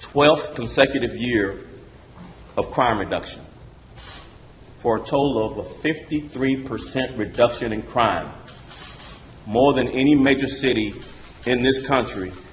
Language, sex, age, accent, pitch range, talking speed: English, male, 40-59, American, 115-140 Hz, 115 wpm